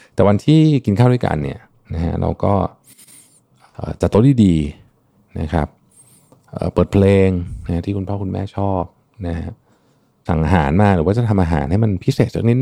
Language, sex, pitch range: Thai, male, 80-110 Hz